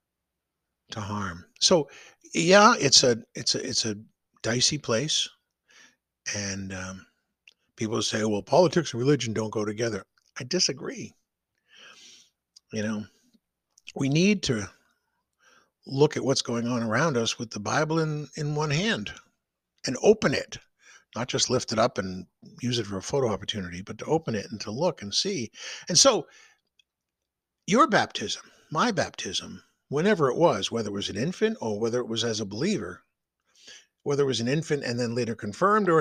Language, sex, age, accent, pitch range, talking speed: English, male, 60-79, American, 100-150 Hz, 165 wpm